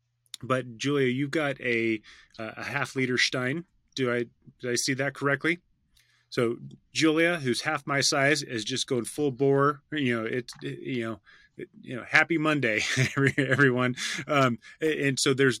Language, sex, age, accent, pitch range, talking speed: English, male, 30-49, American, 115-135 Hz, 165 wpm